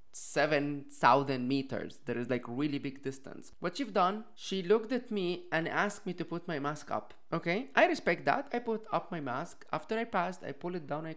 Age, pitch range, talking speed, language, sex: 20-39, 130-180 Hz, 215 wpm, English, male